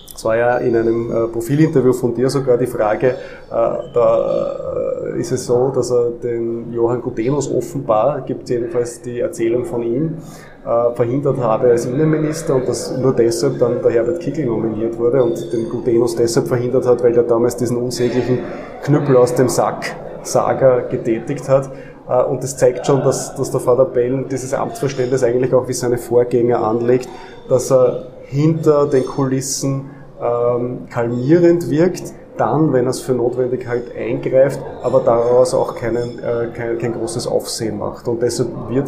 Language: German